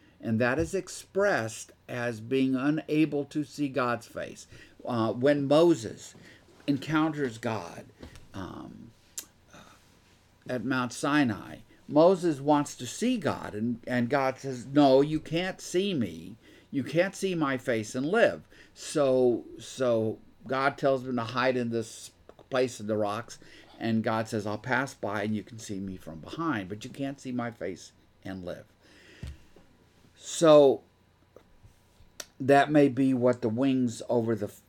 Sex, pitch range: male, 105-140 Hz